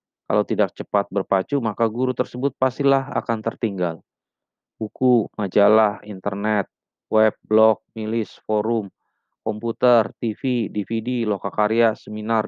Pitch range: 100-120 Hz